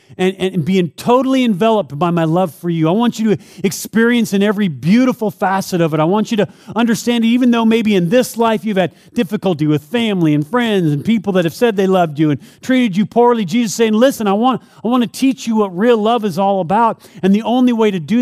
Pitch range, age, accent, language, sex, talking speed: 160-215 Hz, 40-59, American, English, male, 245 wpm